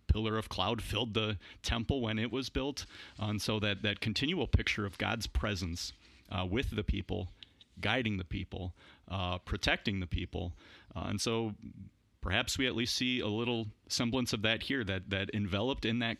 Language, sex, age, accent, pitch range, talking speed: English, male, 30-49, American, 95-110 Hz, 180 wpm